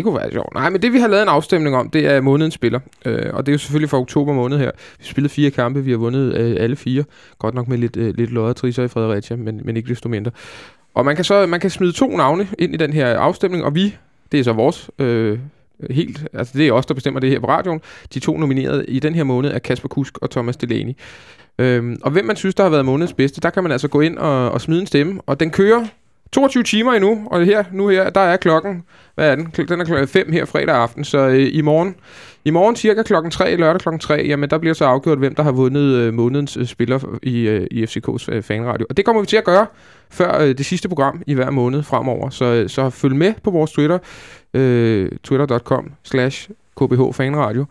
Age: 20-39